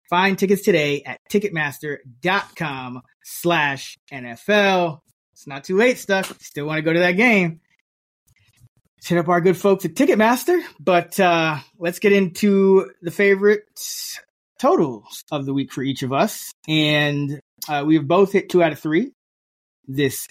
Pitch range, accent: 135-190 Hz, American